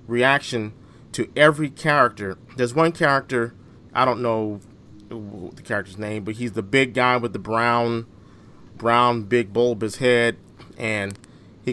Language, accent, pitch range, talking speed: English, American, 110-165 Hz, 145 wpm